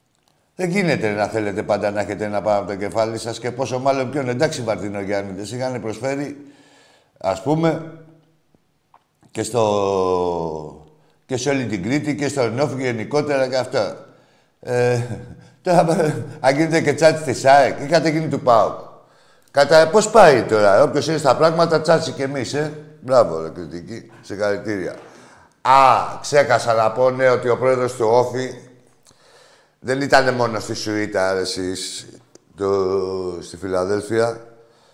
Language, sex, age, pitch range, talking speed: Greek, male, 60-79, 105-140 Hz, 140 wpm